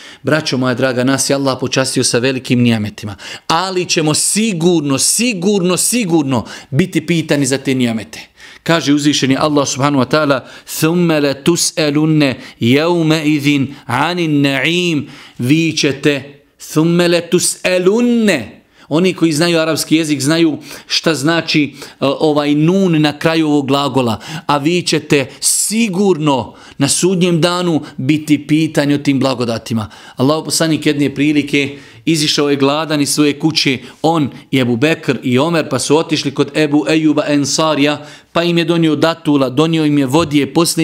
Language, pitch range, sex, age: English, 140-165 Hz, male, 40-59